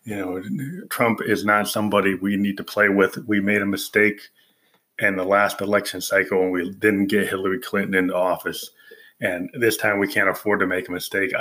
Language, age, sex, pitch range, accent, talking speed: English, 30-49, male, 100-110 Hz, American, 200 wpm